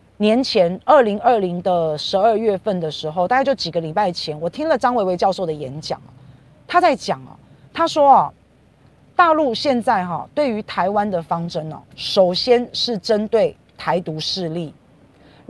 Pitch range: 175-245 Hz